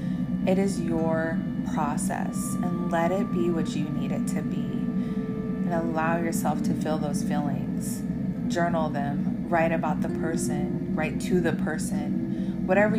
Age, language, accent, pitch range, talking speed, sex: 20-39, English, American, 190-220 Hz, 150 wpm, female